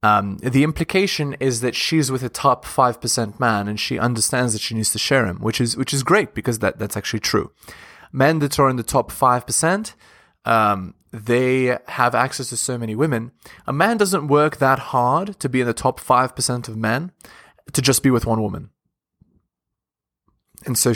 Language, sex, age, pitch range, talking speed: English, male, 20-39, 110-150 Hz, 190 wpm